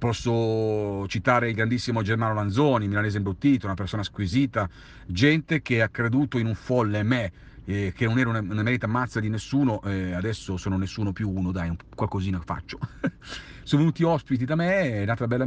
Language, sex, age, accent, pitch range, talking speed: Italian, male, 40-59, native, 95-135 Hz, 185 wpm